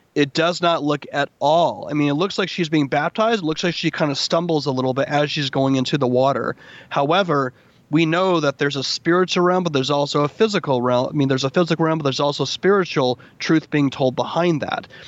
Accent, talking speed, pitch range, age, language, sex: American, 235 wpm, 135-165 Hz, 30-49, English, male